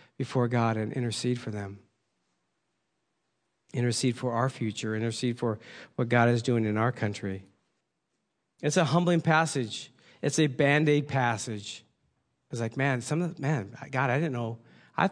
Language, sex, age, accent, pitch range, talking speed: English, male, 40-59, American, 120-155 Hz, 155 wpm